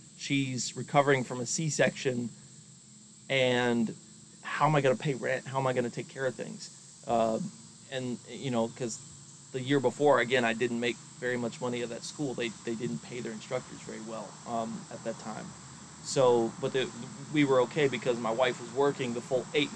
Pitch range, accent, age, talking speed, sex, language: 120-150 Hz, American, 30-49, 200 wpm, male, English